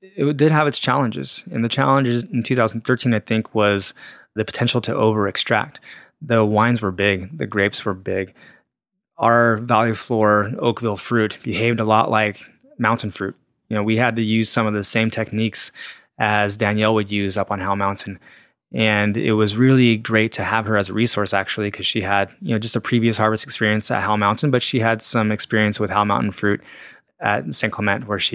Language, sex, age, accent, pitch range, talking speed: English, male, 20-39, American, 100-120 Hz, 200 wpm